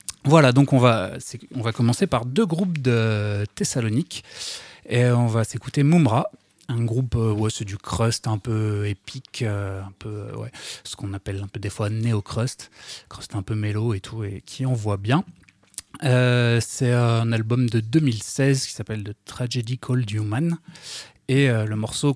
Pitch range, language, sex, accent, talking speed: 110-130 Hz, French, male, French, 170 wpm